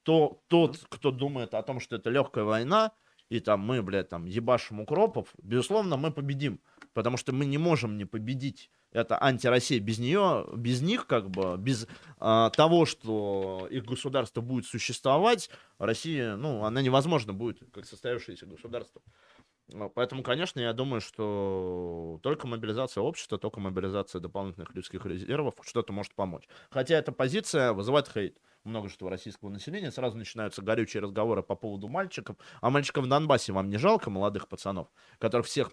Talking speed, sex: 155 wpm, male